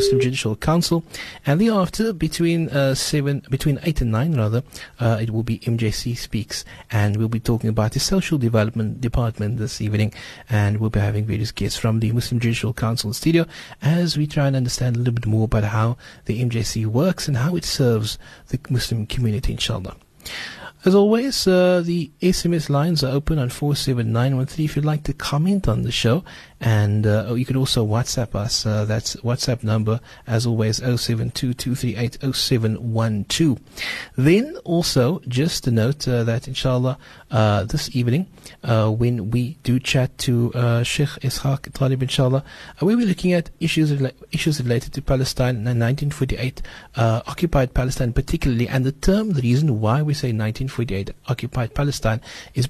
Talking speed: 165 wpm